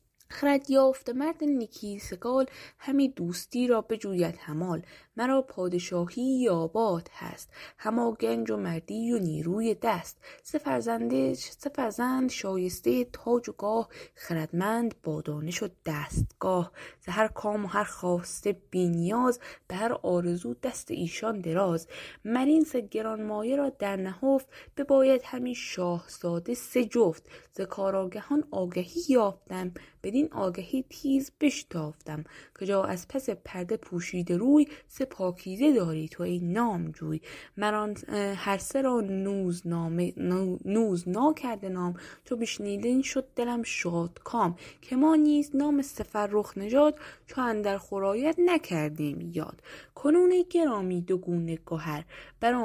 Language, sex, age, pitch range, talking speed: Persian, female, 20-39, 175-255 Hz, 125 wpm